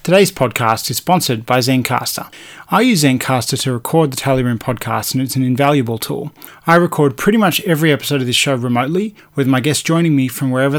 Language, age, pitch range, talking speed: English, 30-49, 130-155 Hz, 200 wpm